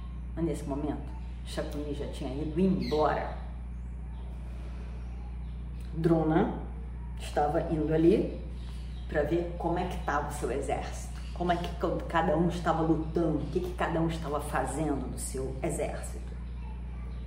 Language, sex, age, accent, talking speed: Portuguese, female, 40-59, Brazilian, 130 wpm